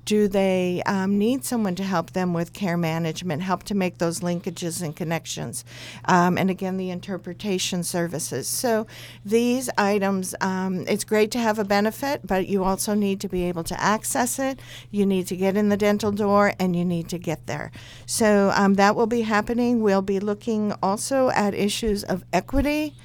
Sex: female